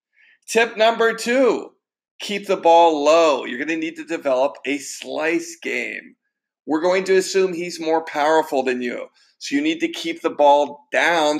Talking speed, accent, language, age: 175 wpm, American, English, 50-69